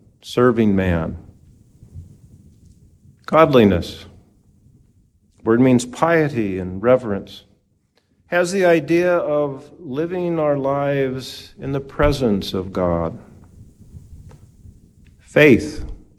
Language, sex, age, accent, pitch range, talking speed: English, male, 50-69, American, 105-150 Hz, 80 wpm